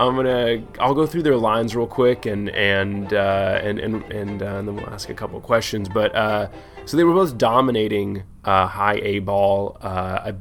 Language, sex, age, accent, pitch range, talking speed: English, male, 20-39, American, 100-115 Hz, 210 wpm